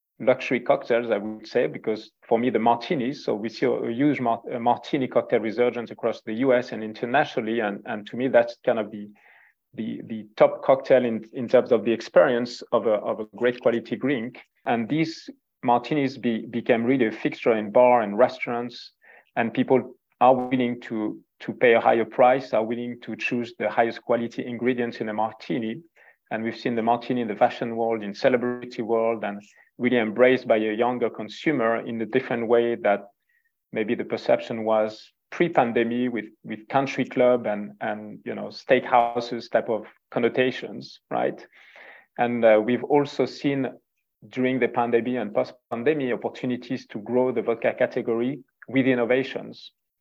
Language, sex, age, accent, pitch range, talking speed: English, male, 40-59, French, 115-125 Hz, 170 wpm